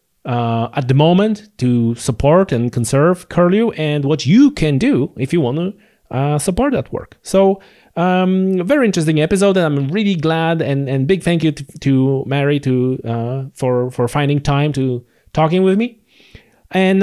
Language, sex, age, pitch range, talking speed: English, male, 30-49, 135-185 Hz, 180 wpm